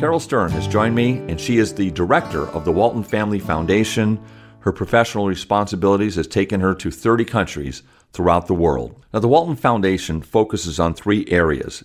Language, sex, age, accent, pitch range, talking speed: English, male, 50-69, American, 85-110 Hz, 175 wpm